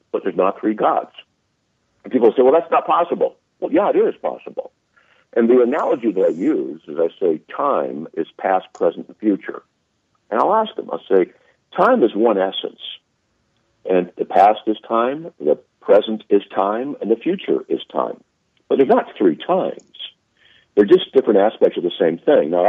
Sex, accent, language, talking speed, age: male, American, English, 185 wpm, 60-79